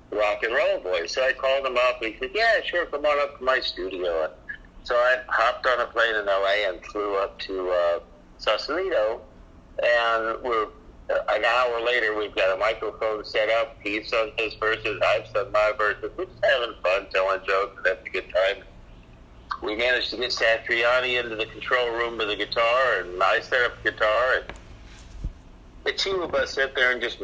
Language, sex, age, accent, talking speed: English, male, 50-69, American, 205 wpm